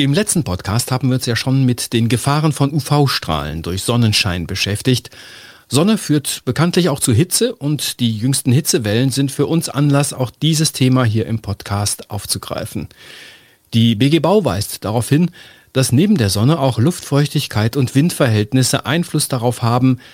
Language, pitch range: German, 115-150 Hz